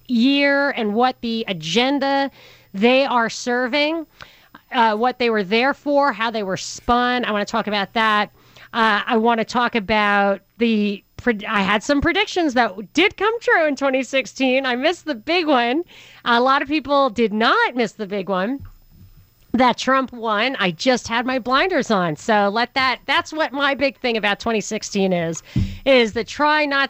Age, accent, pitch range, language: 40-59, American, 215-275 Hz, English